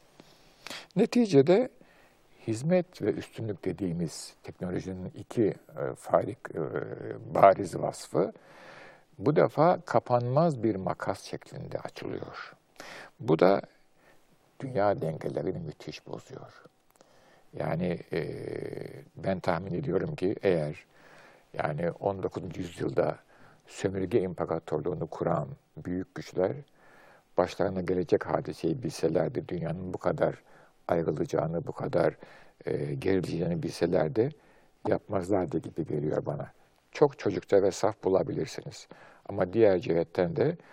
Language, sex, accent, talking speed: Turkish, male, native, 100 wpm